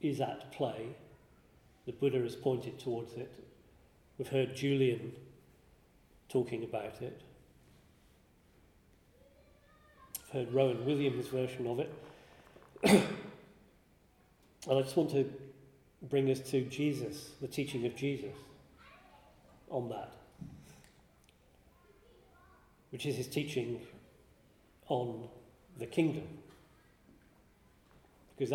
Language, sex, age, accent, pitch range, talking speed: English, male, 40-59, British, 120-140 Hz, 95 wpm